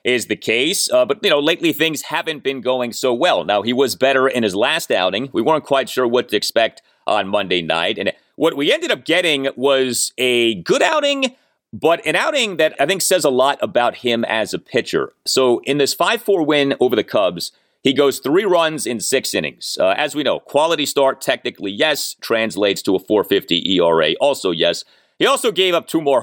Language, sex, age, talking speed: English, male, 30-49, 210 wpm